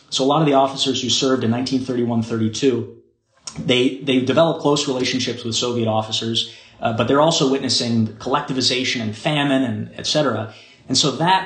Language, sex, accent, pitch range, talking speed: English, male, American, 115-140 Hz, 155 wpm